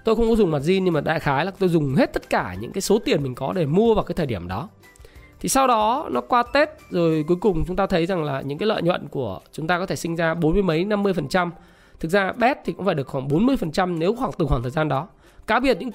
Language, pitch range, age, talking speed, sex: Vietnamese, 145-200 Hz, 20-39, 290 wpm, male